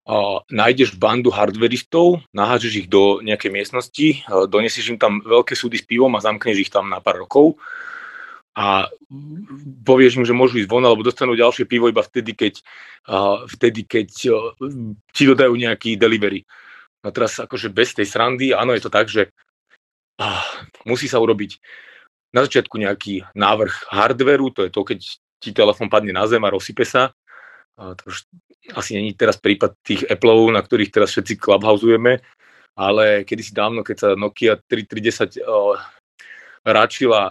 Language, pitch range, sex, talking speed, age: Slovak, 100-130 Hz, male, 155 wpm, 30-49